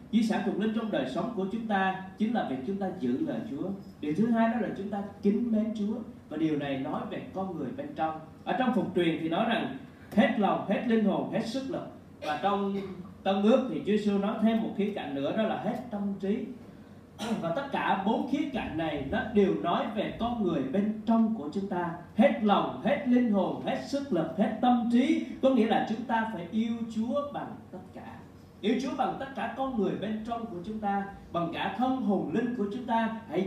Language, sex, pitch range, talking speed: Vietnamese, male, 190-235 Hz, 235 wpm